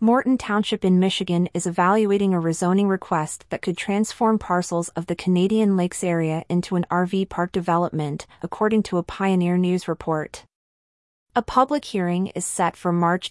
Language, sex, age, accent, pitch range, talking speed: English, female, 30-49, American, 170-200 Hz, 160 wpm